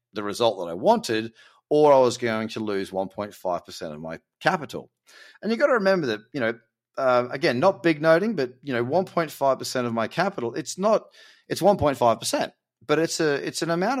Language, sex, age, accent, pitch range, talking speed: English, male, 30-49, Australian, 110-145 Hz, 195 wpm